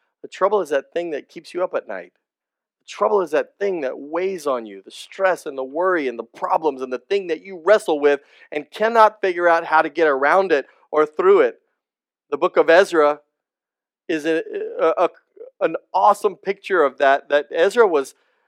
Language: English